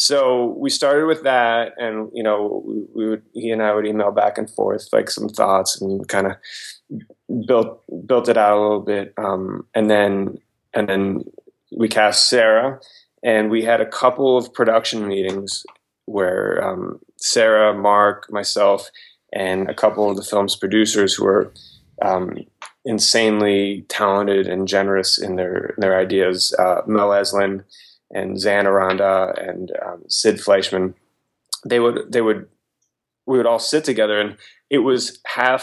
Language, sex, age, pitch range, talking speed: English, male, 20-39, 100-120 Hz, 160 wpm